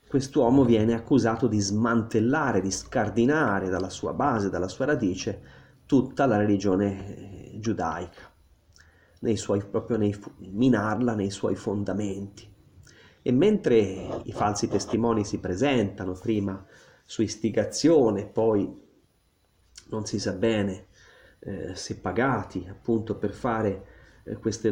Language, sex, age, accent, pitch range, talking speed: Italian, male, 30-49, native, 100-120 Hz, 110 wpm